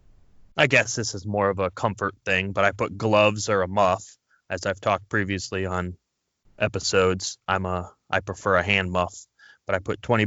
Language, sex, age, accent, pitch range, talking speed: English, male, 20-39, American, 90-105 Hz, 195 wpm